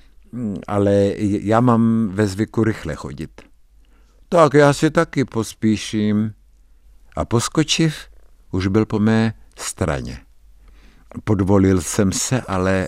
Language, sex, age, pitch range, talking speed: Czech, male, 60-79, 95-125 Hz, 105 wpm